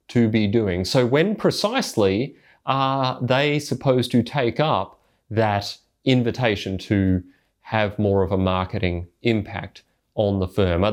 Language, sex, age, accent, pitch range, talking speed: English, male, 30-49, Australian, 105-135 Hz, 135 wpm